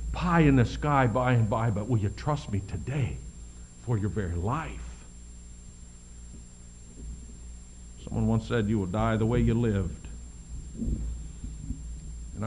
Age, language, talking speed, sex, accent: 60-79, English, 135 wpm, male, American